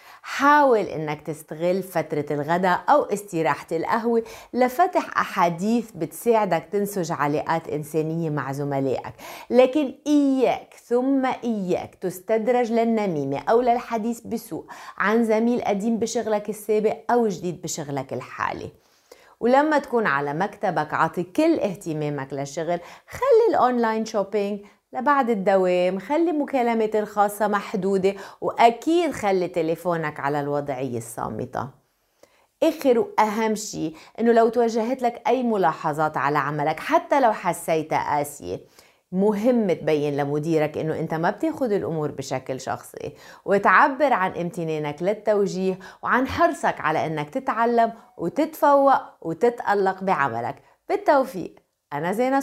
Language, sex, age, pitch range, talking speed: Arabic, female, 30-49, 160-240 Hz, 110 wpm